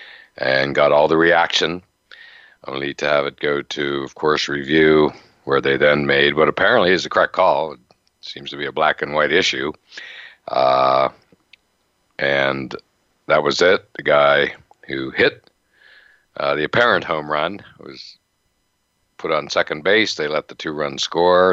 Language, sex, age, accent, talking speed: English, male, 60-79, American, 160 wpm